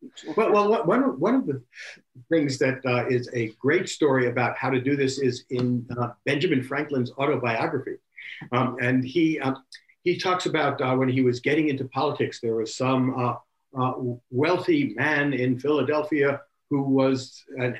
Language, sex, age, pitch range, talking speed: English, male, 60-79, 130-165 Hz, 165 wpm